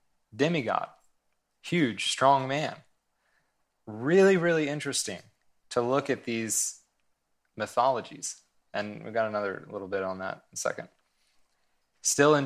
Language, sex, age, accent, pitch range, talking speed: English, male, 20-39, American, 110-130 Hz, 120 wpm